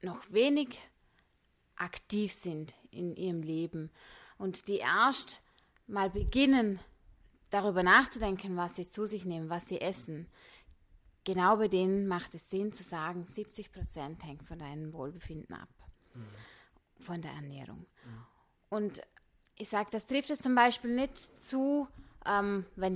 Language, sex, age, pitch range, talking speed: German, female, 20-39, 170-225 Hz, 130 wpm